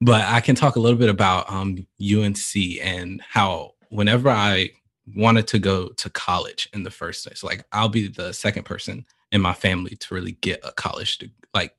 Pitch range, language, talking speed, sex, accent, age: 95-110 Hz, English, 195 wpm, male, American, 20-39